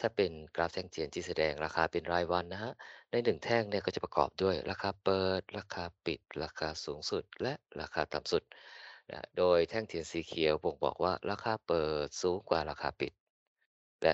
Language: Thai